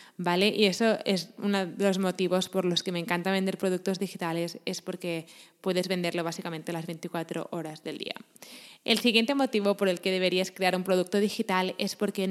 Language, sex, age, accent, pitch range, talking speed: Spanish, female, 20-39, Spanish, 180-210 Hz, 190 wpm